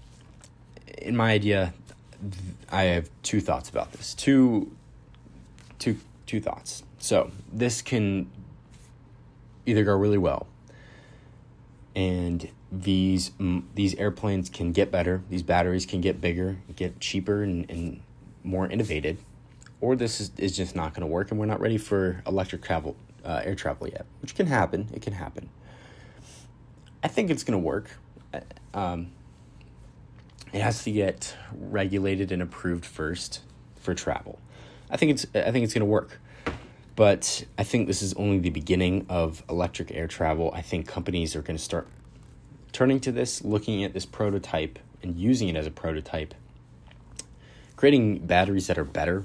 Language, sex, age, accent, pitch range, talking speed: English, male, 20-39, American, 85-105 Hz, 155 wpm